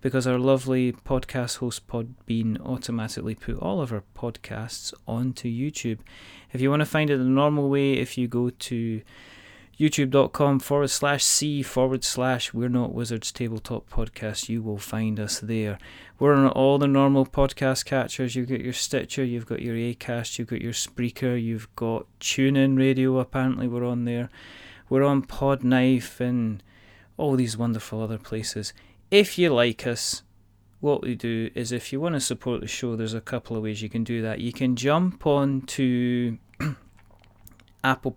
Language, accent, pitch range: English, British, 110-130 Hz